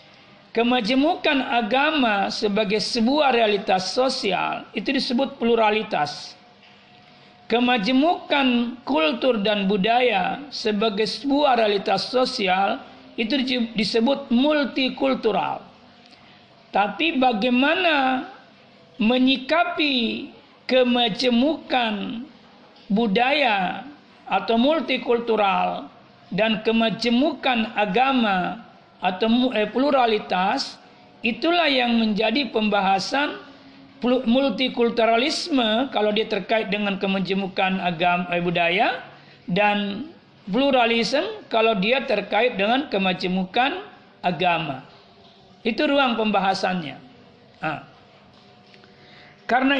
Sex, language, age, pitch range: male, Indonesian, 50-69, 210-270 Hz